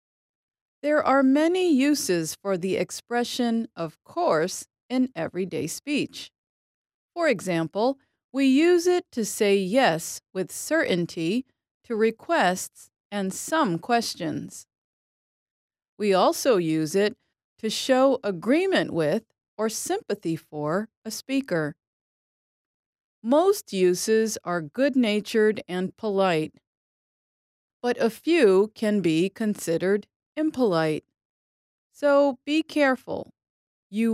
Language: English